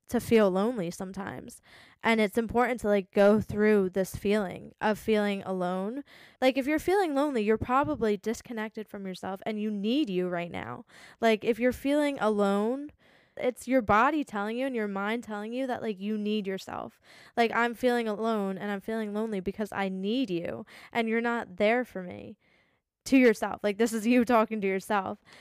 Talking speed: 185 wpm